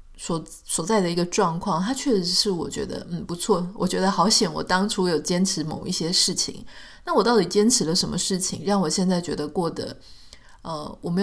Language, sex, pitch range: Chinese, female, 170-215 Hz